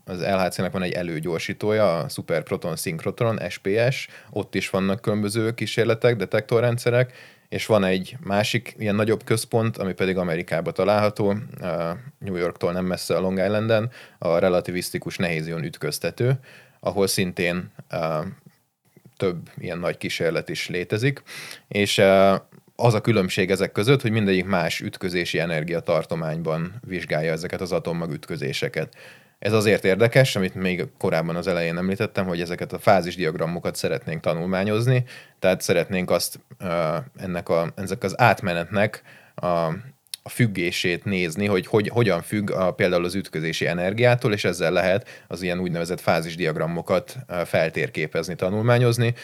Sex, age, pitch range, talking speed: male, 20-39, 90-115 Hz, 130 wpm